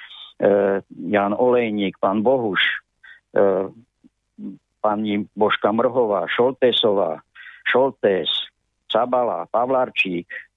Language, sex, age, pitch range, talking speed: Slovak, male, 50-69, 105-125 Hz, 60 wpm